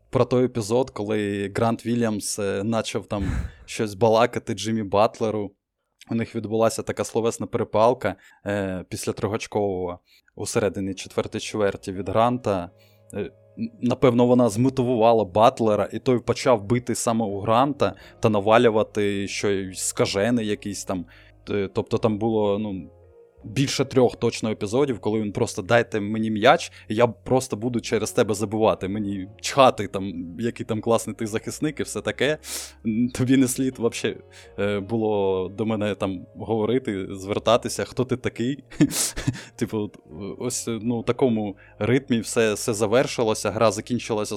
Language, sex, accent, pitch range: Ukrainian, male, native, 105-120 Hz